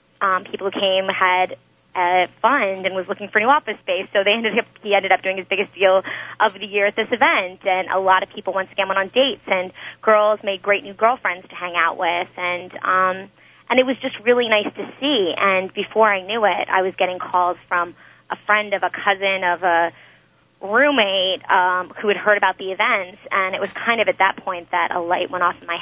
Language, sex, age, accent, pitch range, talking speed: English, female, 20-39, American, 180-205 Hz, 235 wpm